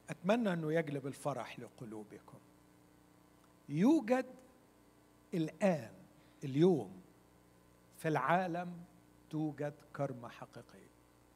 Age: 60-79